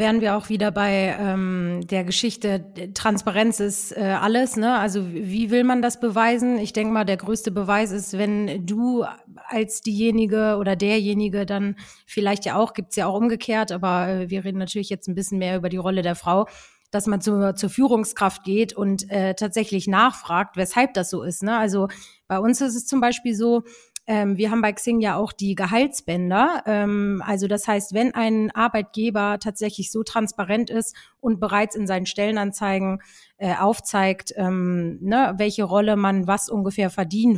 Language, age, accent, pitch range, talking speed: German, 30-49, German, 195-220 Hz, 175 wpm